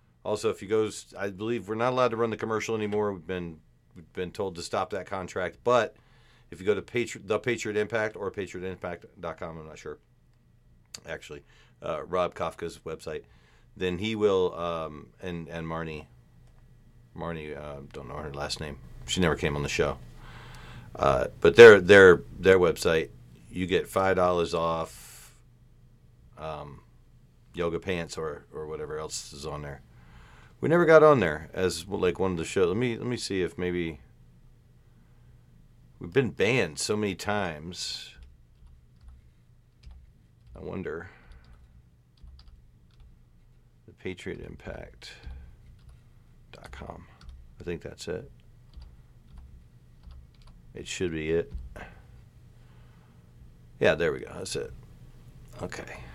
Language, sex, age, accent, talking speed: English, male, 40-59, American, 135 wpm